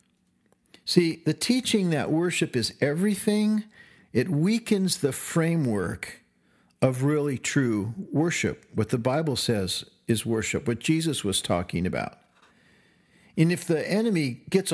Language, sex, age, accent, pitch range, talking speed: English, male, 50-69, American, 120-180 Hz, 125 wpm